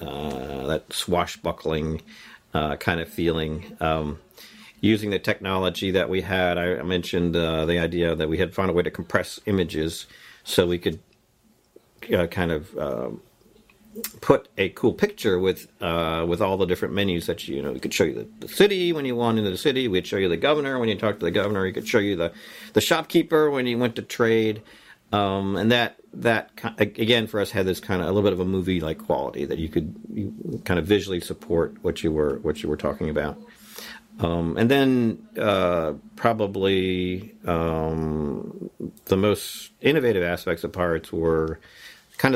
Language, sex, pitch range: English, male, 85-110 Hz